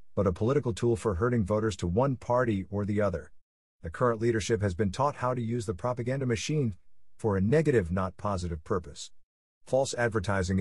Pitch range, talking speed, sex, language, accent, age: 95-135 Hz, 185 wpm, male, English, American, 50-69